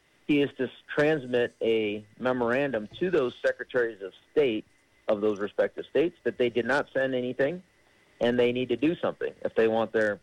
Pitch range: 110-145 Hz